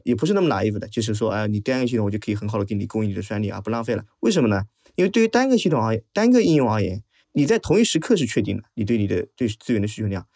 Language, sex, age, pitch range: Chinese, male, 20-39, 110-150 Hz